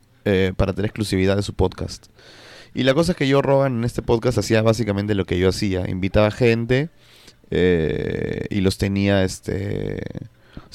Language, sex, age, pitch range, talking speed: Spanish, male, 20-39, 100-125 Hz, 165 wpm